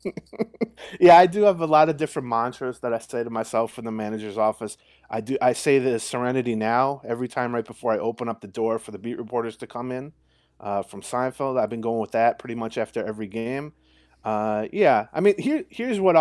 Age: 30-49